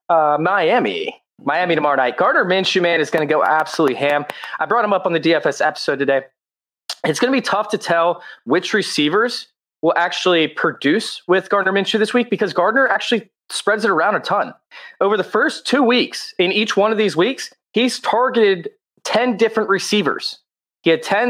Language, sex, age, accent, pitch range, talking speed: English, male, 20-39, American, 165-230 Hz, 190 wpm